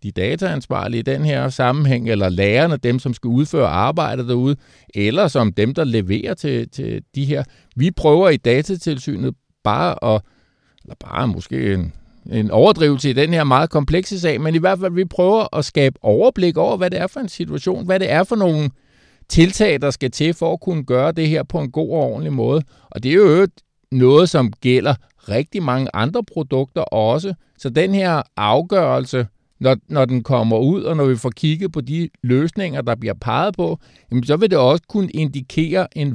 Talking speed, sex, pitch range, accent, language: 195 wpm, male, 125-165 Hz, native, Danish